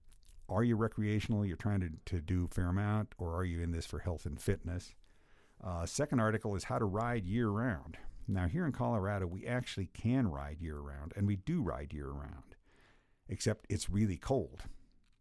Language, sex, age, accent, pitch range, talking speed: English, male, 50-69, American, 90-110 Hz, 180 wpm